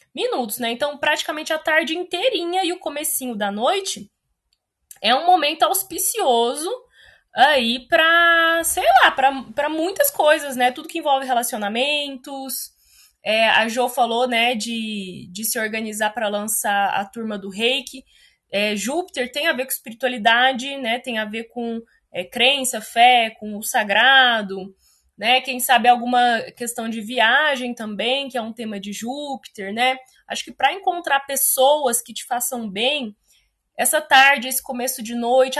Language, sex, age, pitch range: Portuguese, female, 20-39, 225-295 Hz